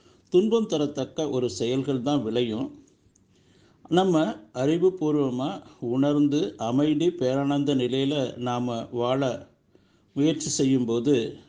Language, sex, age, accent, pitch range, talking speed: Tamil, male, 50-69, native, 120-150 Hz, 85 wpm